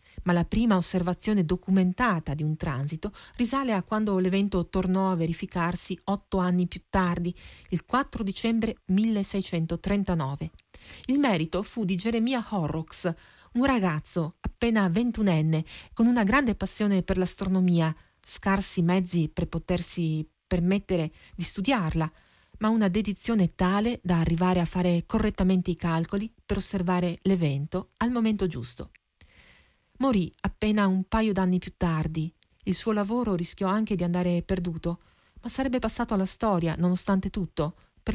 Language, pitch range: Italian, 175-215 Hz